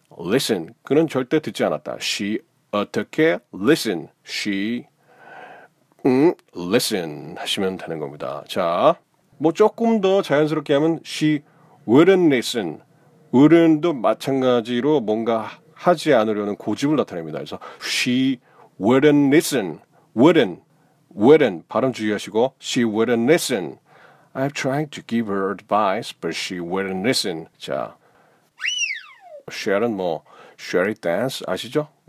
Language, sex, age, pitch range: Korean, male, 40-59, 115-155 Hz